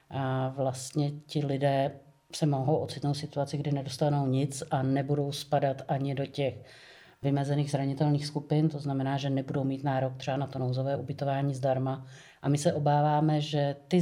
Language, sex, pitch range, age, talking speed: English, female, 140-155 Hz, 40-59, 165 wpm